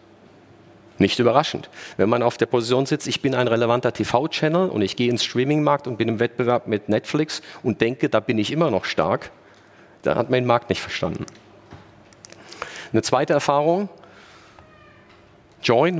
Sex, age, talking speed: male, 40-59, 160 wpm